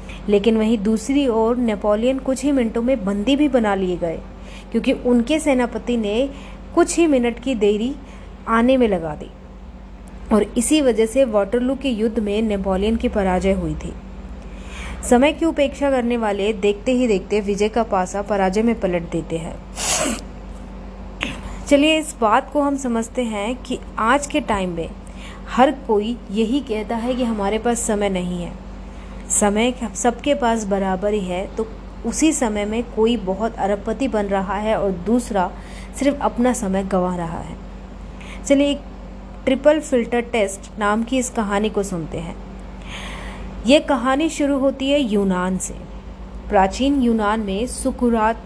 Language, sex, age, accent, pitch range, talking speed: Hindi, female, 30-49, native, 200-255 Hz, 155 wpm